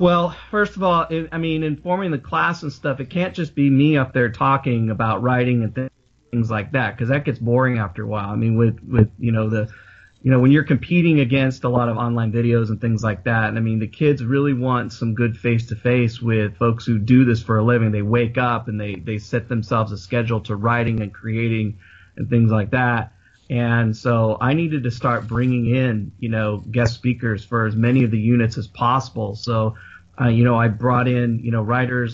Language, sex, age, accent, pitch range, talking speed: English, male, 30-49, American, 110-130 Hz, 220 wpm